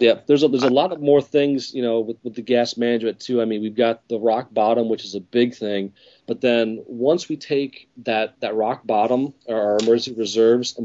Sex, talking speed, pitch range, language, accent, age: male, 240 wpm, 110-125 Hz, English, American, 30-49